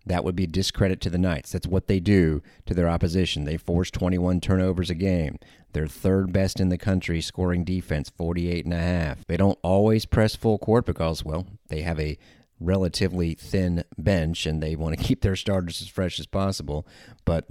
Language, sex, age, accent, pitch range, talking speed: English, male, 30-49, American, 80-100 Hz, 200 wpm